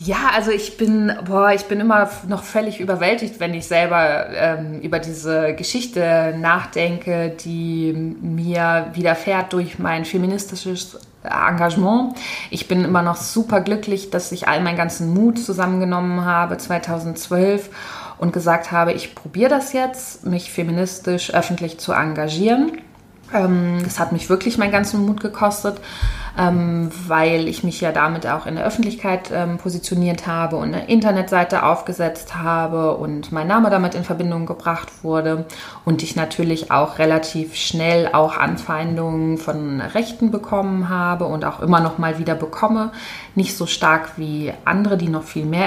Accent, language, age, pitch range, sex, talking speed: German, German, 20-39, 165-195 Hz, female, 150 wpm